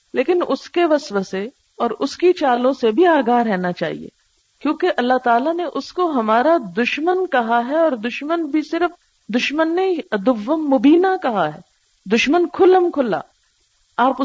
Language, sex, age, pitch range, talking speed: Urdu, female, 50-69, 195-280 Hz, 150 wpm